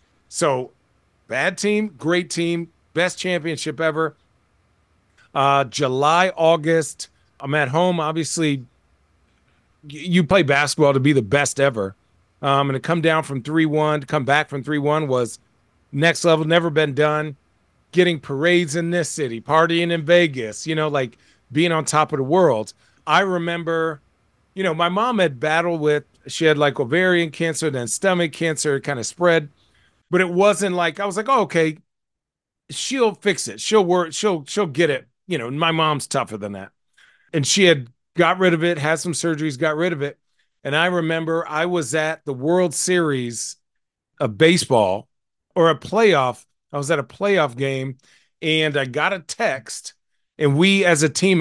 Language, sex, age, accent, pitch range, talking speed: English, male, 40-59, American, 140-170 Hz, 170 wpm